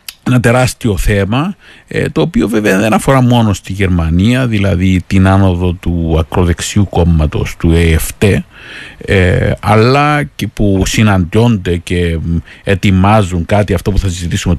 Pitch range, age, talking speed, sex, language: 90-125 Hz, 50-69, 125 wpm, male, Greek